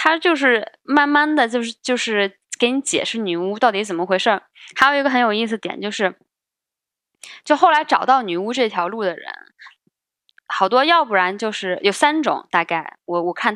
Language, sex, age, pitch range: Chinese, female, 20-39, 175-240 Hz